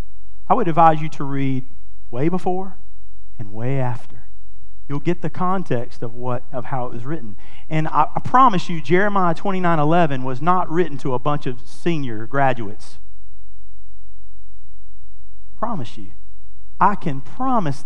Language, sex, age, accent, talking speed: English, male, 40-59, American, 150 wpm